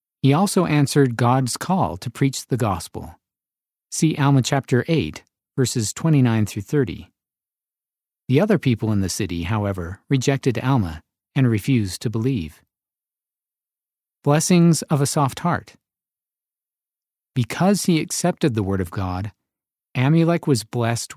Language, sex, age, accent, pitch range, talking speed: English, male, 50-69, American, 110-145 Hz, 130 wpm